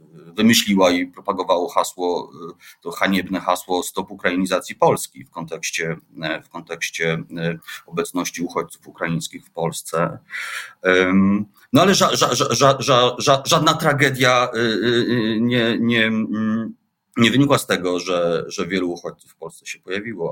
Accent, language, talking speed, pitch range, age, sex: native, Polish, 125 wpm, 90-115 Hz, 30-49, male